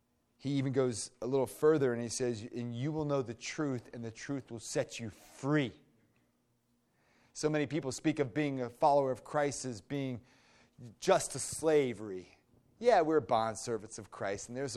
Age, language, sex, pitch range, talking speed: 30-49, English, male, 120-150 Hz, 180 wpm